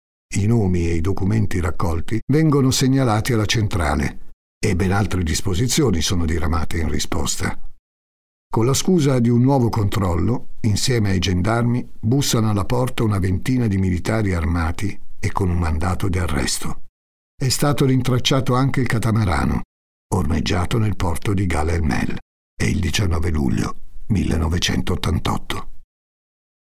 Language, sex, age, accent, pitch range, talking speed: Italian, male, 50-69, native, 85-120 Hz, 130 wpm